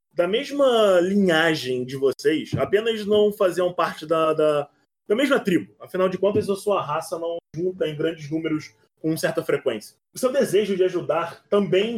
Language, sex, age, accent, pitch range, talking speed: Portuguese, male, 20-39, Brazilian, 165-210 Hz, 170 wpm